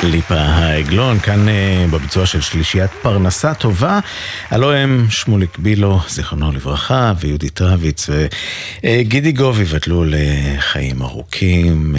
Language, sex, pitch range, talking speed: Hebrew, male, 80-110 Hz, 105 wpm